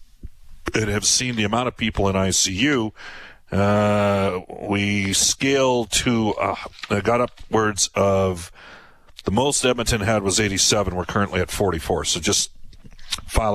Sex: male